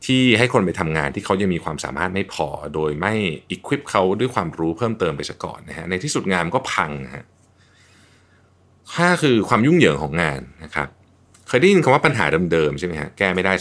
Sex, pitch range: male, 85-110 Hz